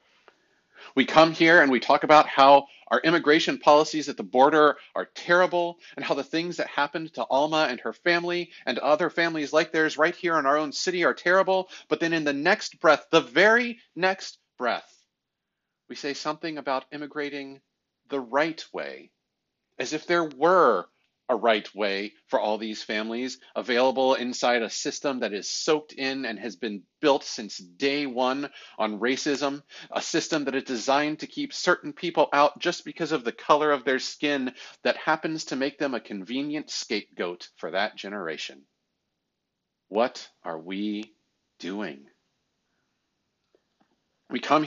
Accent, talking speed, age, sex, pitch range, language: American, 165 wpm, 40-59, male, 130-165 Hz, English